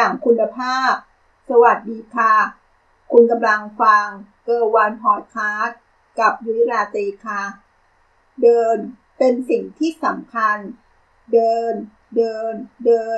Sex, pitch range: female, 210-255 Hz